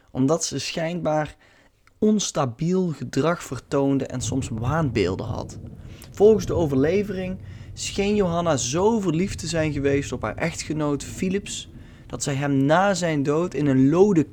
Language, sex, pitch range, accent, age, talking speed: Dutch, male, 125-165 Hz, Dutch, 20-39, 140 wpm